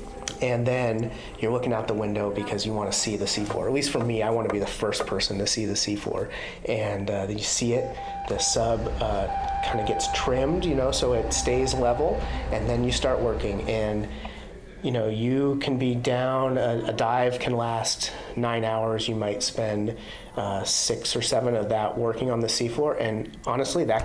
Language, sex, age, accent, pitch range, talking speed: English, male, 30-49, American, 105-120 Hz, 200 wpm